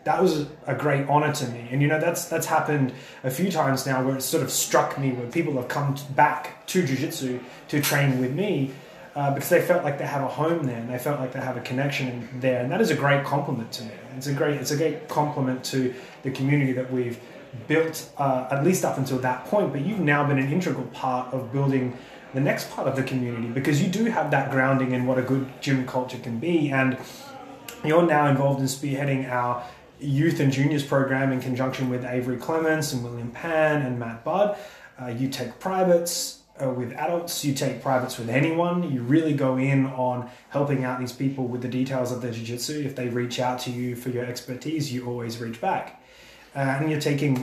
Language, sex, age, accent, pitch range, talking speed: English, male, 20-39, Australian, 130-160 Hz, 225 wpm